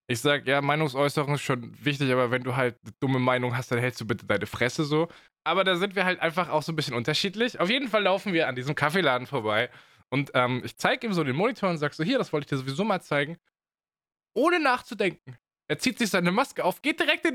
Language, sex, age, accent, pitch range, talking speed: German, male, 20-39, German, 125-175 Hz, 250 wpm